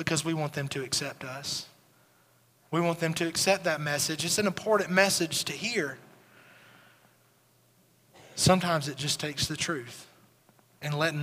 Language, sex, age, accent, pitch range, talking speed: English, male, 30-49, American, 150-180 Hz, 150 wpm